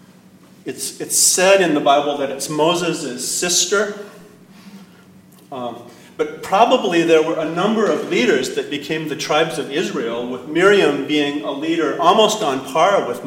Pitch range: 140-190 Hz